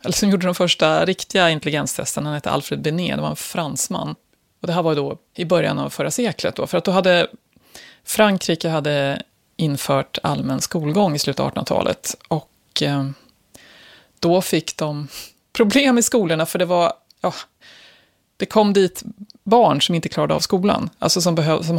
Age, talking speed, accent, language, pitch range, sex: 30-49, 175 wpm, native, Swedish, 150-195 Hz, female